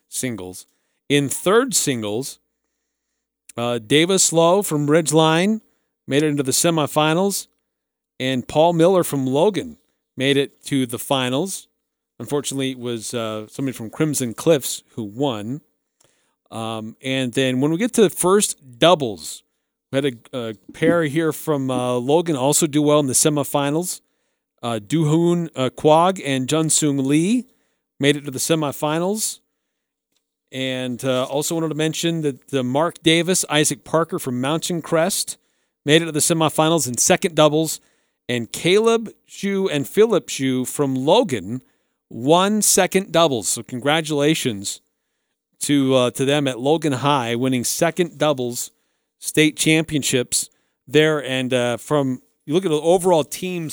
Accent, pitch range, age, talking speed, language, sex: American, 130-165 Hz, 40-59, 145 wpm, English, male